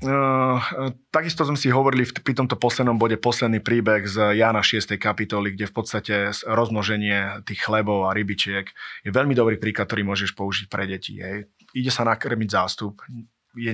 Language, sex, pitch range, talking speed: Slovak, male, 100-115 Hz, 170 wpm